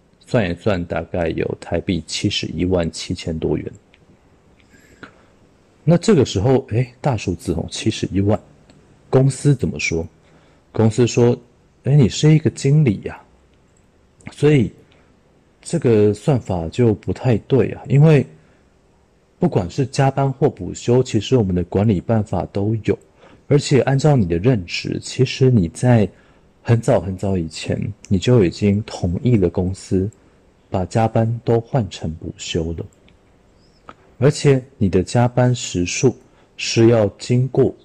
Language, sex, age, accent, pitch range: Chinese, male, 50-69, native, 90-125 Hz